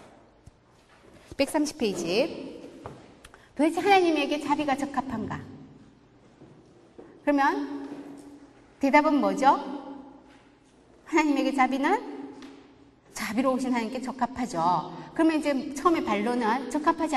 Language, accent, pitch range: Korean, native, 235-310 Hz